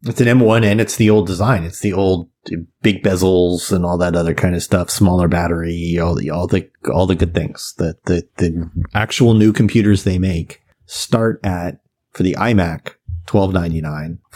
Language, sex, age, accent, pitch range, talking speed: English, male, 30-49, American, 90-110 Hz, 190 wpm